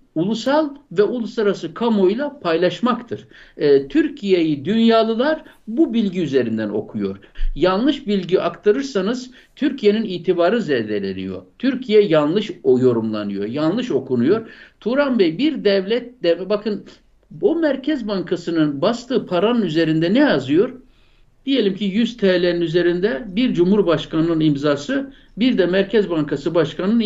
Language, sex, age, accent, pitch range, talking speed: Turkish, male, 60-79, native, 165-235 Hz, 110 wpm